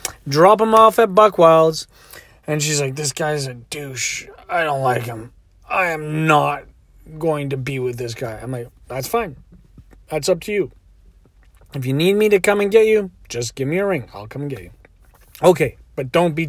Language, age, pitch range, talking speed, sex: English, 30-49, 120-185 Hz, 205 wpm, male